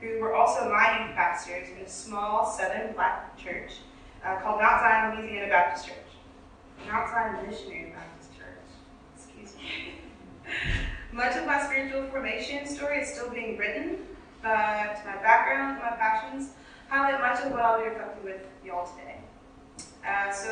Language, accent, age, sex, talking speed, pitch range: English, American, 20-39, female, 155 wpm, 200-235 Hz